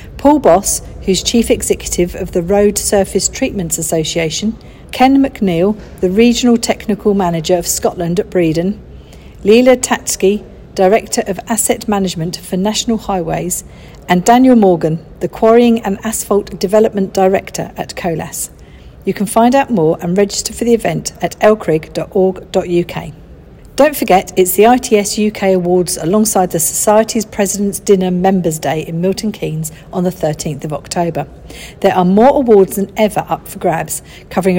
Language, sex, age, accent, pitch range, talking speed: English, female, 50-69, British, 175-215 Hz, 145 wpm